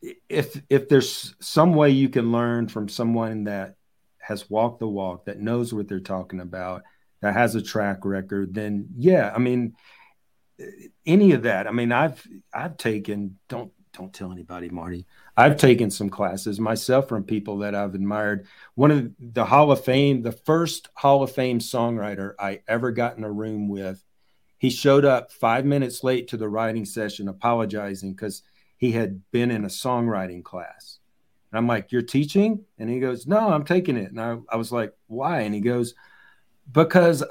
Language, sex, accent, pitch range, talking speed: English, male, American, 105-135 Hz, 180 wpm